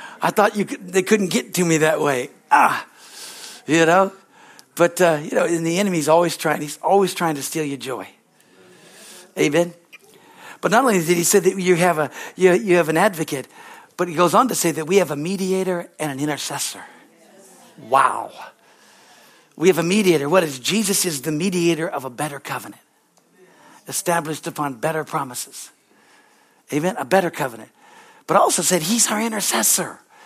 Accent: American